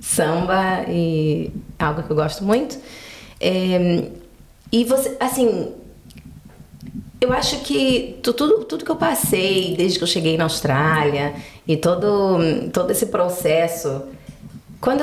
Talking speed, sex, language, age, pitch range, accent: 130 wpm, female, Portuguese, 30-49, 160-225 Hz, Brazilian